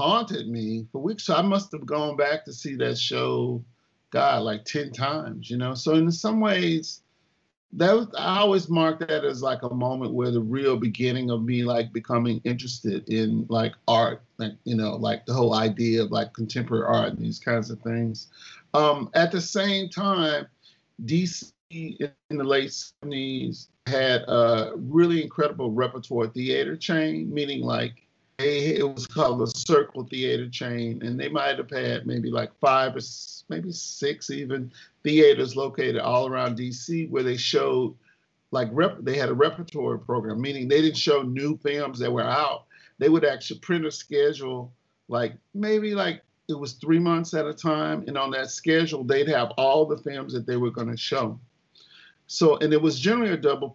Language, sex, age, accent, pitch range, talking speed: English, male, 50-69, American, 120-160 Hz, 180 wpm